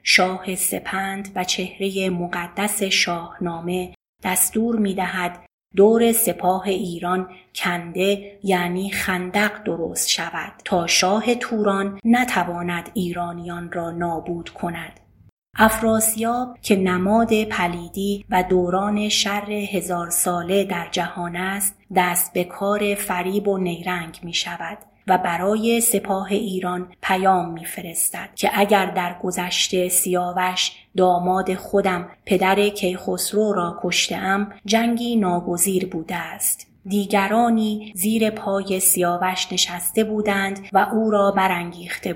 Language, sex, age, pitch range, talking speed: Persian, female, 30-49, 180-205 Hz, 110 wpm